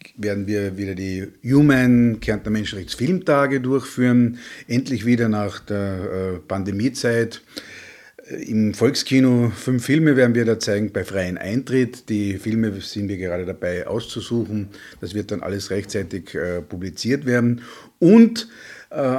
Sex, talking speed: male, 120 wpm